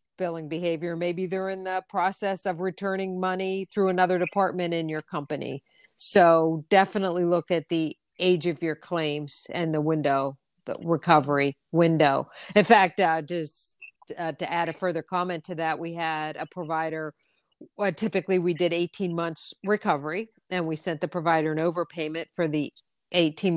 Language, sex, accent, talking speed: English, female, American, 165 wpm